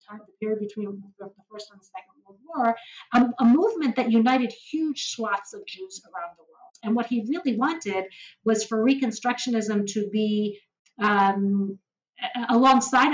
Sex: female